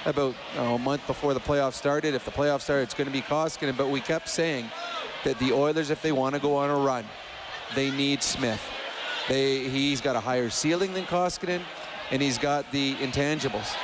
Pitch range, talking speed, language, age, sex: 135-155 Hz, 210 wpm, English, 40-59, male